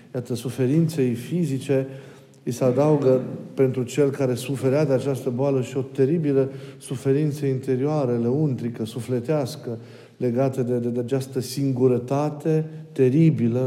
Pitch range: 115-135 Hz